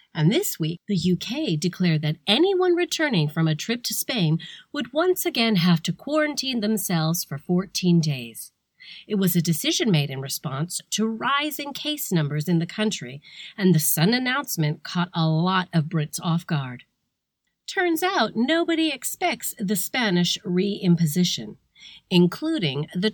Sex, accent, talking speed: female, American, 150 wpm